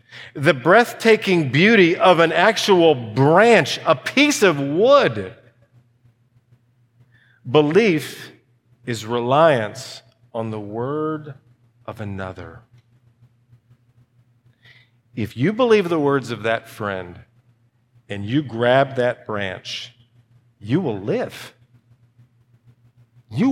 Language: English